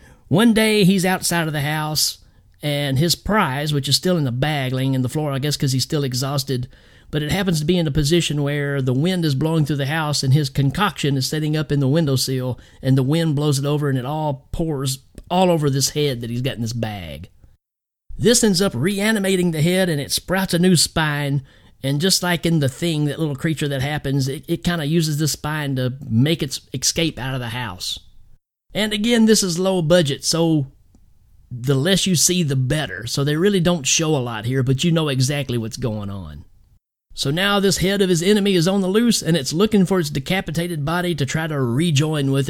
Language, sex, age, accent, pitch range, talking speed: English, male, 50-69, American, 135-175 Hz, 225 wpm